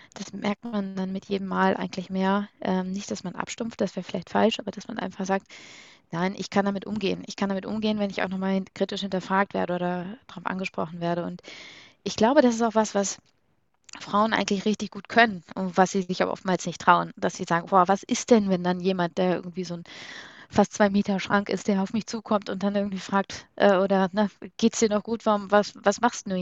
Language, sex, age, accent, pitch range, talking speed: German, female, 20-39, German, 185-220 Hz, 235 wpm